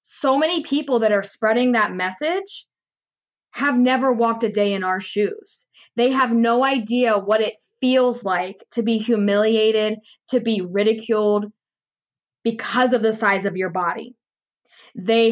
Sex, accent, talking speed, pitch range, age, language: female, American, 150 wpm, 205-245 Hz, 20-39, English